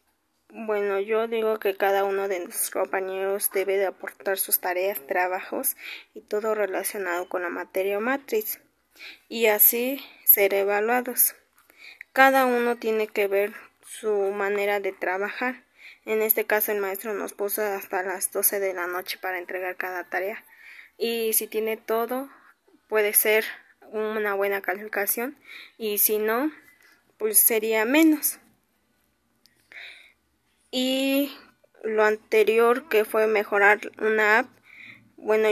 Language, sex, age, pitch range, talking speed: Spanish, female, 10-29, 200-235 Hz, 130 wpm